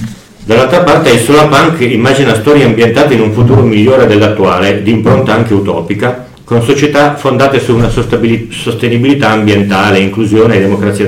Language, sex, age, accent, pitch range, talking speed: Italian, male, 40-59, native, 95-115 Hz, 145 wpm